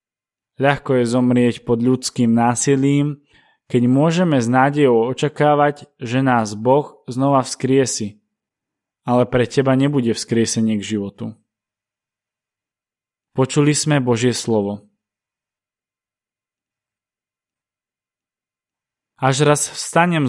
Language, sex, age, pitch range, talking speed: Slovak, male, 20-39, 115-145 Hz, 90 wpm